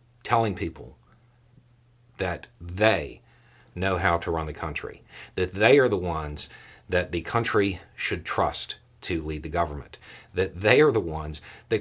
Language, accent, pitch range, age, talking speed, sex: English, American, 90-120 Hz, 50-69, 150 wpm, male